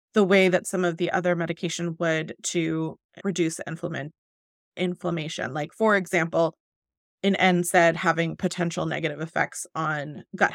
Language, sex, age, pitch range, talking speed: English, female, 20-39, 170-200 Hz, 135 wpm